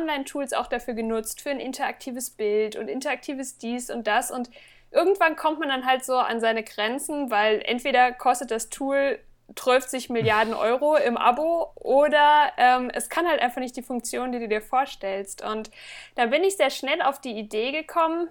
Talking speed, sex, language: 185 wpm, female, German